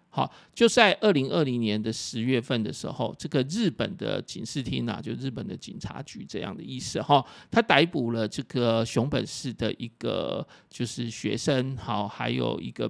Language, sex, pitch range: Chinese, male, 115-145 Hz